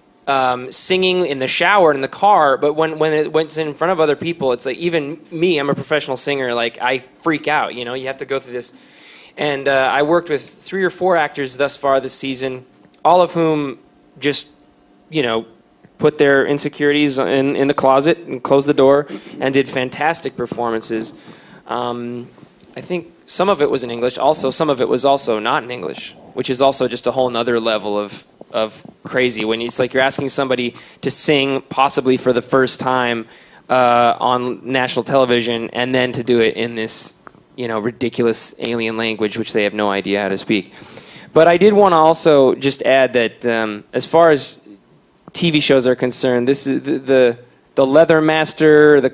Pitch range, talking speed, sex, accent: 120-145 Hz, 200 wpm, male, American